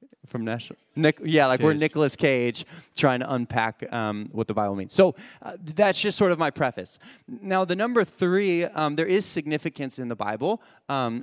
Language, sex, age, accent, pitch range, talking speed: English, male, 20-39, American, 115-155 Hz, 190 wpm